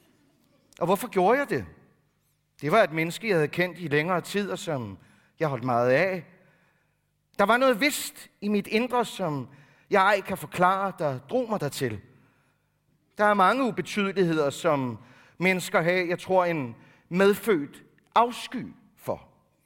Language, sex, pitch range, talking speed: Danish, male, 155-225 Hz, 150 wpm